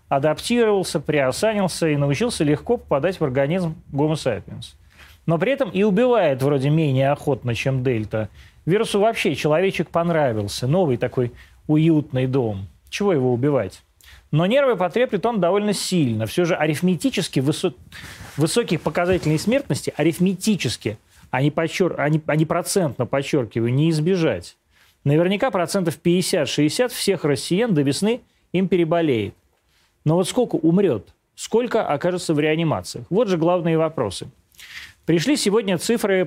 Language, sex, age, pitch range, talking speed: Russian, male, 30-49, 135-185 Hz, 130 wpm